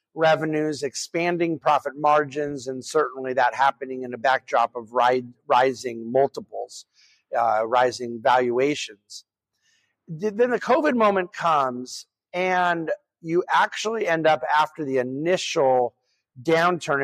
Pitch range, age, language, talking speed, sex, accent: 135-170 Hz, 50-69, English, 115 wpm, male, American